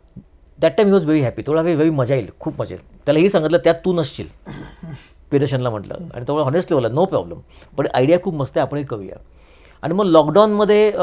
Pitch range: 120-165 Hz